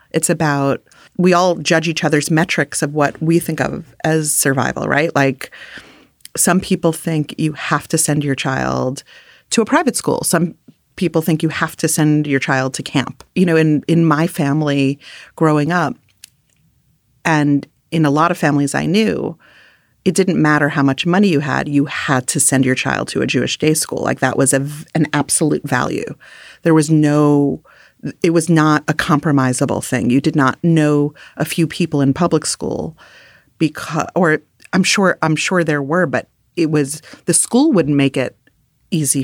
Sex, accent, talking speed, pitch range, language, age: female, American, 180 wpm, 140-170 Hz, English, 30-49